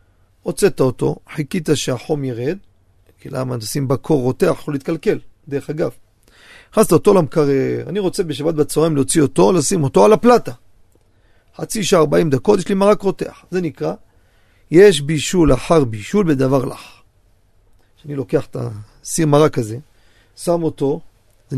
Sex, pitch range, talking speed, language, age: male, 120-180 Hz, 145 wpm, Hebrew, 40-59